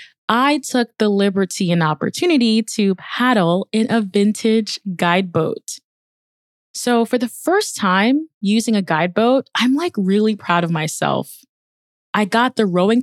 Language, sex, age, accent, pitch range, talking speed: English, female, 20-39, American, 170-225 Hz, 145 wpm